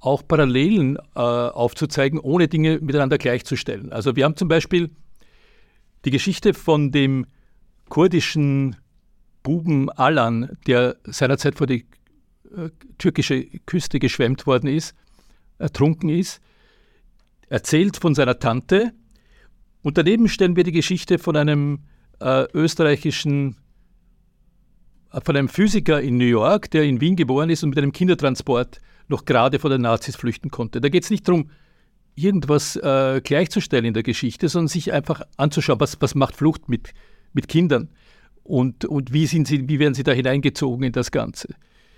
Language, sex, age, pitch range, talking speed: German, male, 50-69, 135-165 Hz, 145 wpm